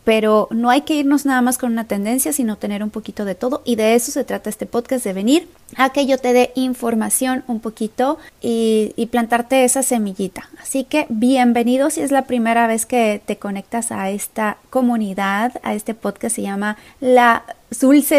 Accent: Mexican